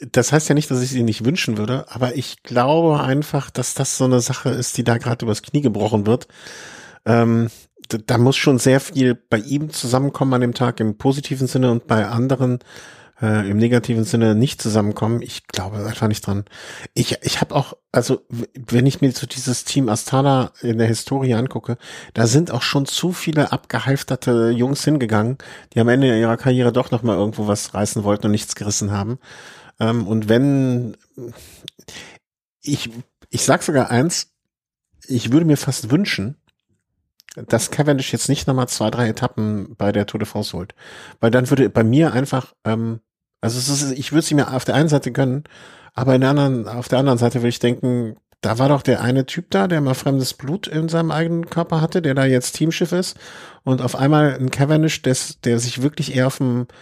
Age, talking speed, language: 40-59, 195 wpm, German